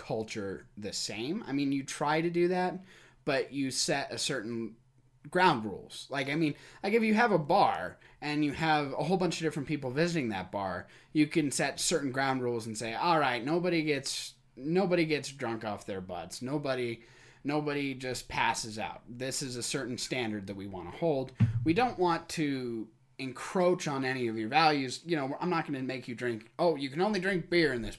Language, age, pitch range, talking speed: English, 20-39, 120-165 Hz, 210 wpm